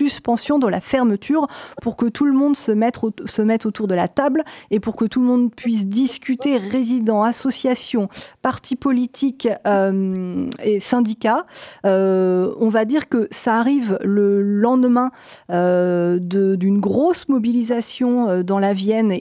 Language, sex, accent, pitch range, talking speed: French, female, French, 200-250 Hz, 145 wpm